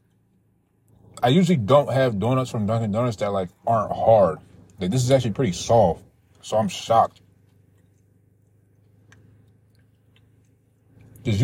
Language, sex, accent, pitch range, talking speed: English, male, American, 100-130 Hz, 115 wpm